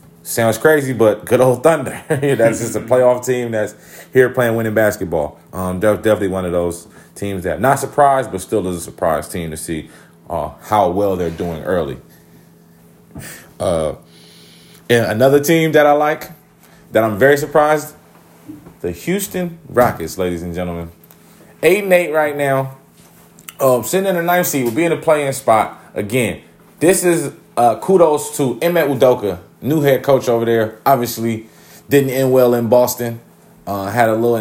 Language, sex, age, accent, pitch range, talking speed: English, male, 30-49, American, 95-135 Hz, 170 wpm